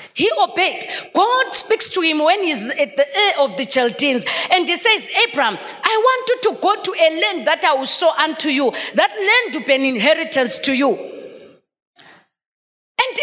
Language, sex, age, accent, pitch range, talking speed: English, female, 40-59, South African, 280-390 Hz, 185 wpm